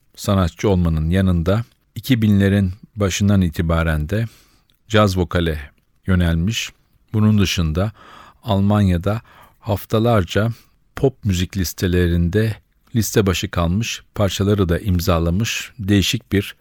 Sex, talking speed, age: male, 90 wpm, 50-69